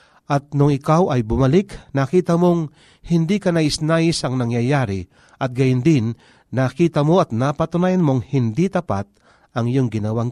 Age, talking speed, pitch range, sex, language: 40-59, 145 wpm, 115-165 Hz, male, Filipino